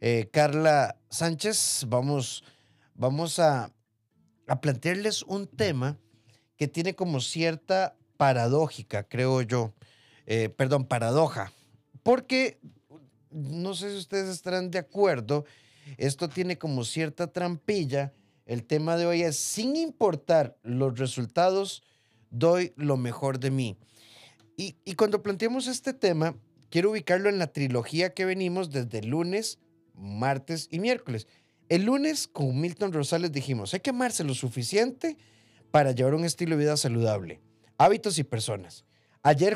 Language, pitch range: Spanish, 120-180 Hz